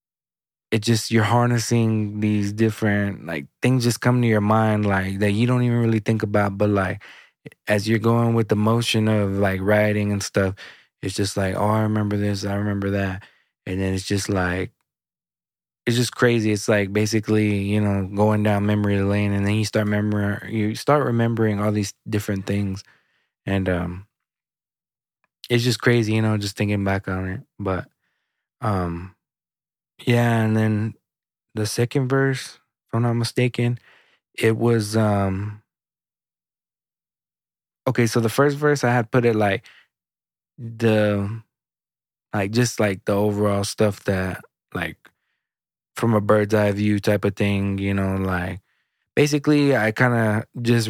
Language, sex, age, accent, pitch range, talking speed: English, male, 20-39, American, 100-115 Hz, 155 wpm